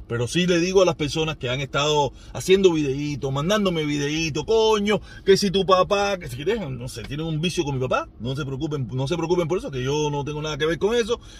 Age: 30-49